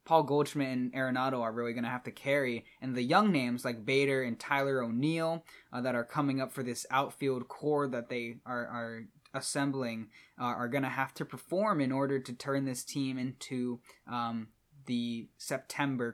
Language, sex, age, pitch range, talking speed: English, male, 10-29, 125-145 Hz, 180 wpm